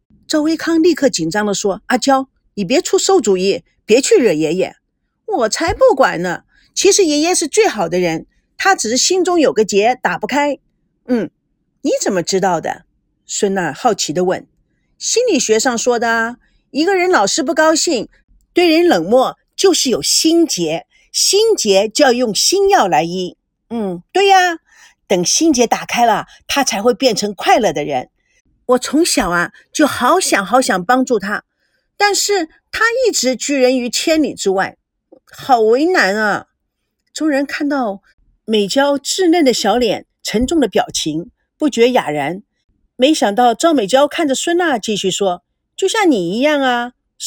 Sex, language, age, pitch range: female, Chinese, 50-69, 220-340 Hz